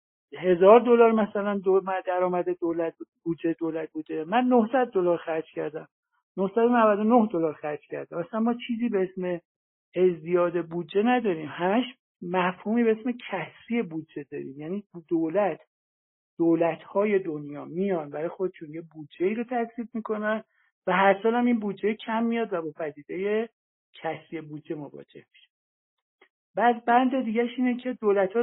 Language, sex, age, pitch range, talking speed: Persian, male, 60-79, 165-220 Hz, 145 wpm